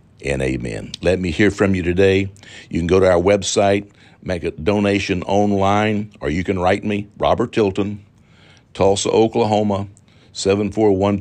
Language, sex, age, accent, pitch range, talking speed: English, male, 60-79, American, 95-110 Hz, 160 wpm